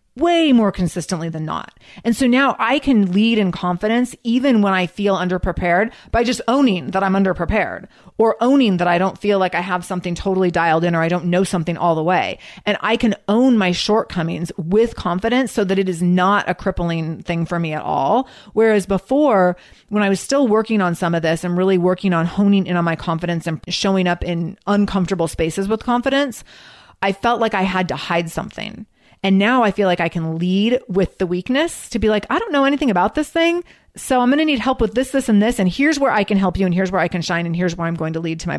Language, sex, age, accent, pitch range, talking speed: English, female, 30-49, American, 175-225 Hz, 240 wpm